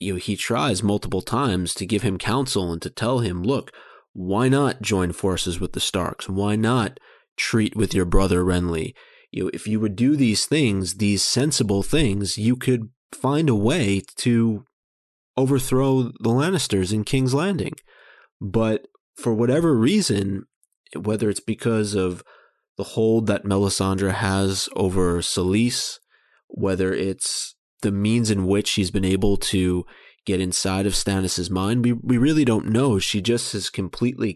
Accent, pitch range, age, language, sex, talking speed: American, 95-115 Hz, 30-49, English, male, 160 wpm